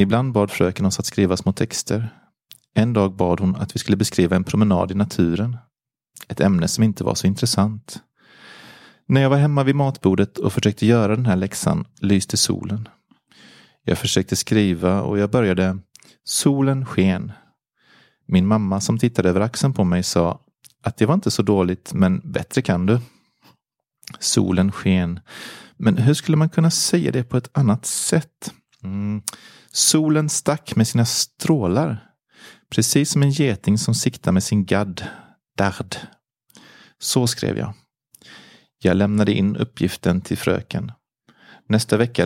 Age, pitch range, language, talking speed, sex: 30-49, 95-125 Hz, Swedish, 155 wpm, male